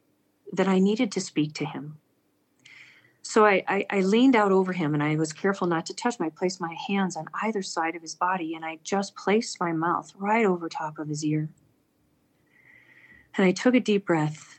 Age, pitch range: 40-59, 170-215 Hz